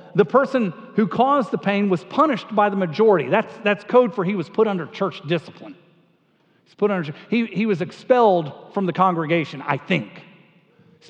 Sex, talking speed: male, 190 wpm